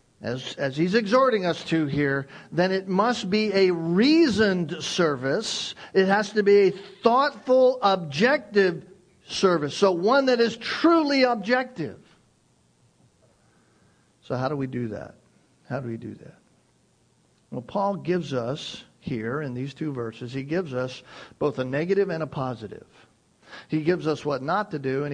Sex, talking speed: male, 155 wpm